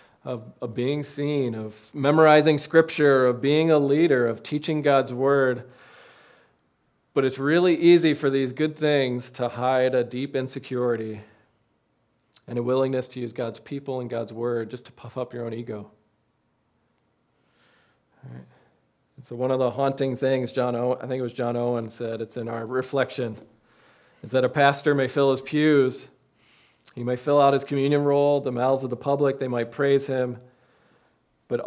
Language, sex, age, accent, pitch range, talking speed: English, male, 40-59, American, 120-140 Hz, 170 wpm